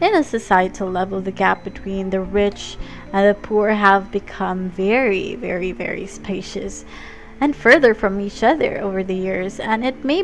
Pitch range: 190-240 Hz